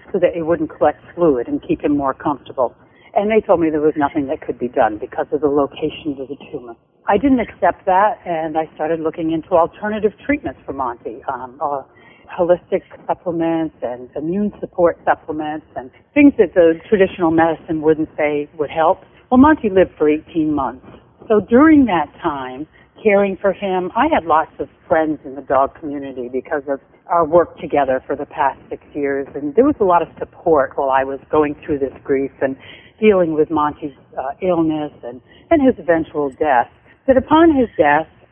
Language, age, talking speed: English, 60-79, 190 wpm